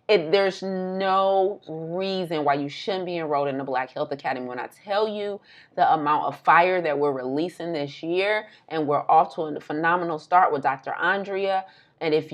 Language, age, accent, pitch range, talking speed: English, 30-49, American, 145-190 Hz, 185 wpm